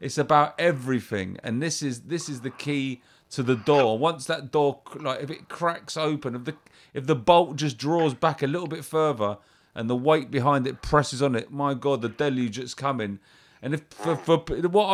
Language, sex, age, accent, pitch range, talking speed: English, male, 30-49, British, 120-160 Hz, 210 wpm